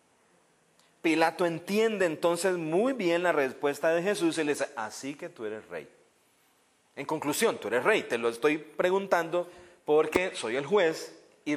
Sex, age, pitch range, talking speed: male, 30-49, 145-195 Hz, 160 wpm